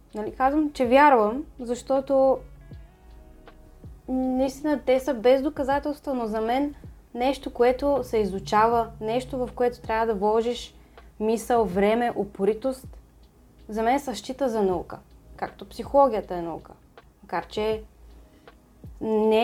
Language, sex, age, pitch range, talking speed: Bulgarian, female, 20-39, 210-270 Hz, 115 wpm